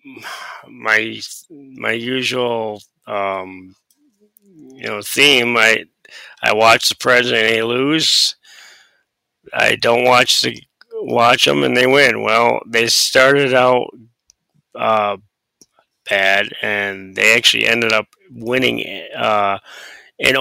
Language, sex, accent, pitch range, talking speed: English, male, American, 110-140 Hz, 110 wpm